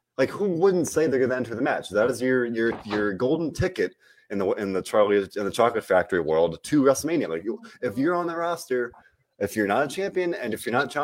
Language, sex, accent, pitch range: English, male, American, 115-155 Hz